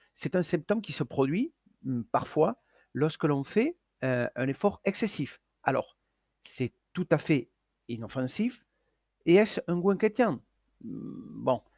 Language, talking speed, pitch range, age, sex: French, 130 wpm, 130-185 Hz, 50-69, male